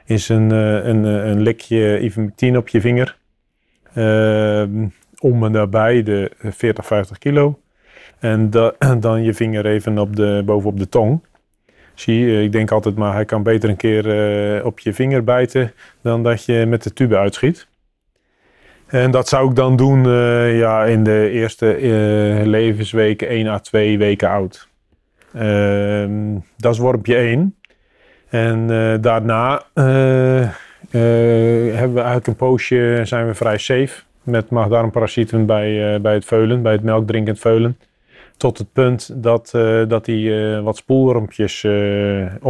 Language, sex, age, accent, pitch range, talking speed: Dutch, male, 30-49, Dutch, 105-120 Hz, 150 wpm